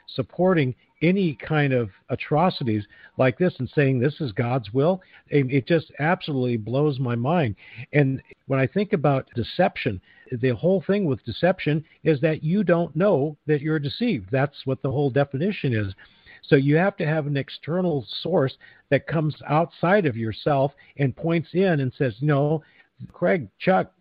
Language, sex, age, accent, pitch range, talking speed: English, male, 50-69, American, 130-165 Hz, 160 wpm